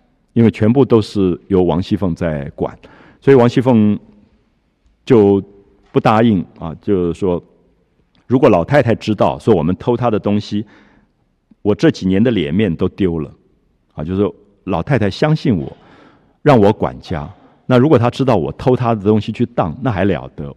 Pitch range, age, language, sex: 90-125 Hz, 50-69, Japanese, male